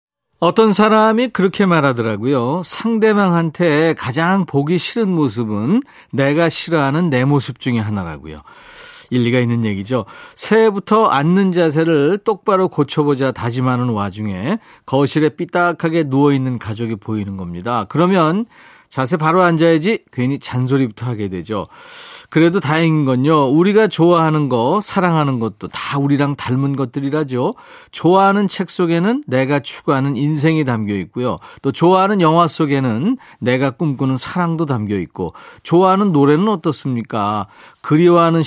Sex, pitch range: male, 125-180 Hz